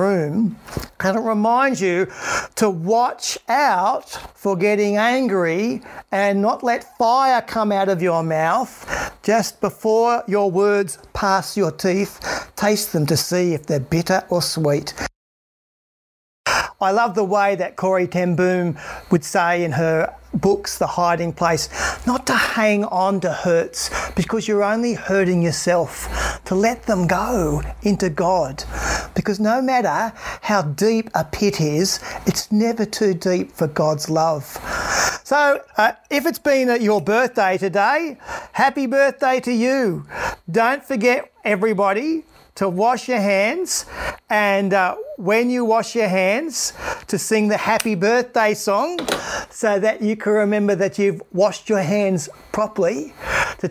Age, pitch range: 50-69, 185-235 Hz